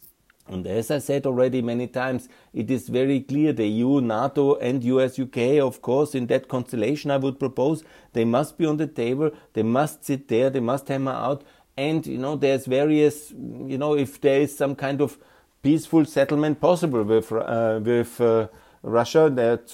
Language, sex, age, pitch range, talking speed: German, male, 50-69, 125-155 Hz, 185 wpm